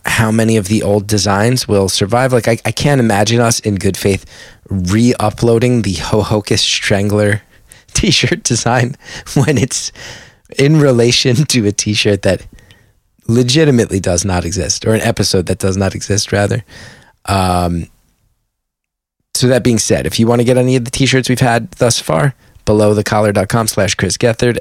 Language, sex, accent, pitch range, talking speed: English, male, American, 95-120 Hz, 160 wpm